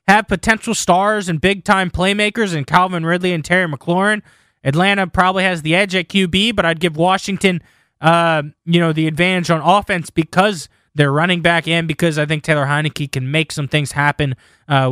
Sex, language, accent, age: male, English, American, 20-39